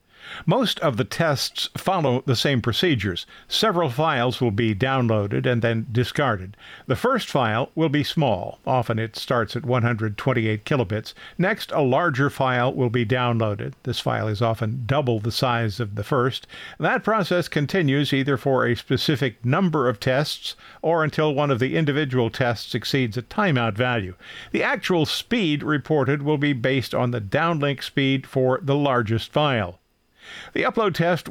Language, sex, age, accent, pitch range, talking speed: English, male, 50-69, American, 120-150 Hz, 160 wpm